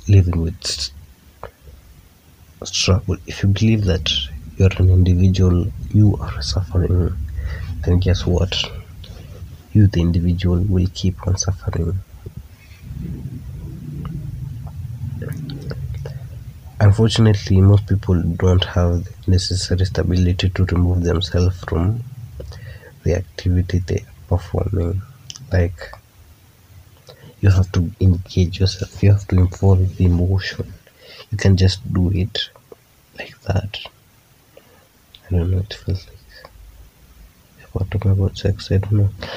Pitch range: 85-100 Hz